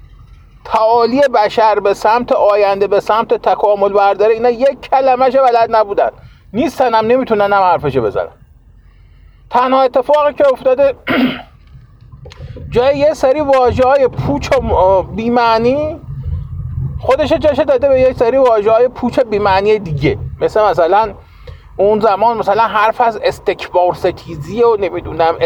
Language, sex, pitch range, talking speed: Persian, male, 205-265 Hz, 125 wpm